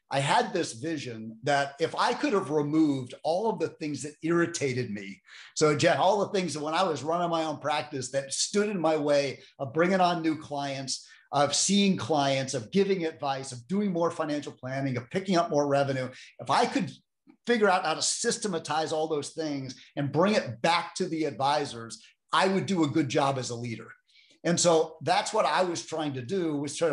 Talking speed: 205 wpm